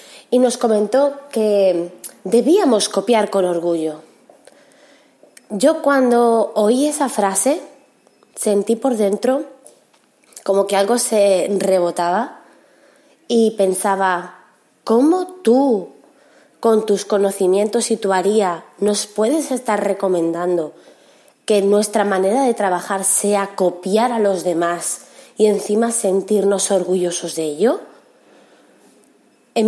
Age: 20-39